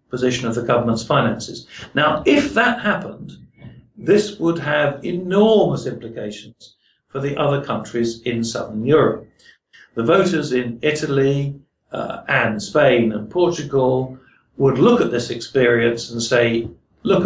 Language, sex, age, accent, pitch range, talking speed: English, male, 60-79, British, 120-145 Hz, 130 wpm